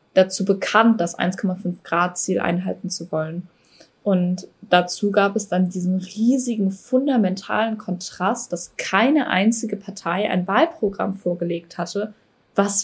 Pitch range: 180-215 Hz